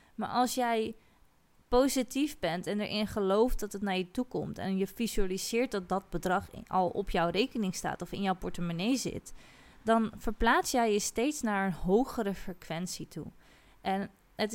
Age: 20-39